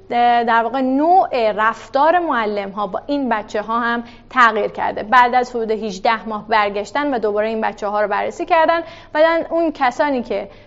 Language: Persian